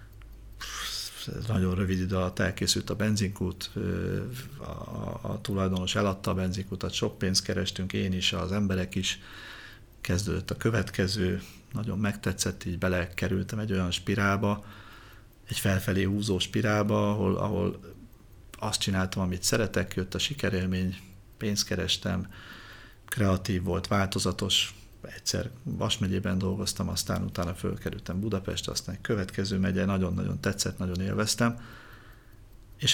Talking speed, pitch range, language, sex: 125 wpm, 95-110 Hz, Hungarian, male